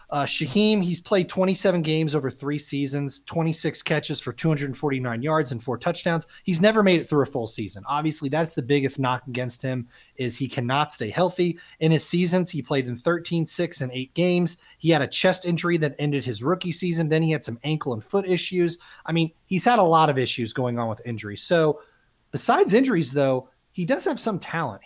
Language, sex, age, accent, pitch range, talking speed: English, male, 30-49, American, 130-175 Hz, 210 wpm